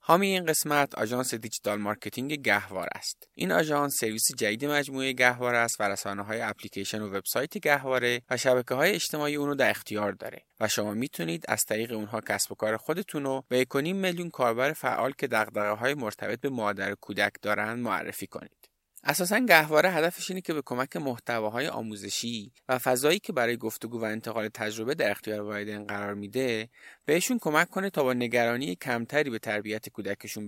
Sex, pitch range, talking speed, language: male, 105-140 Hz, 165 wpm, Persian